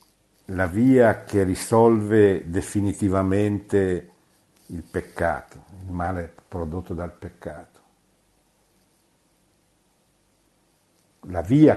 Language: Italian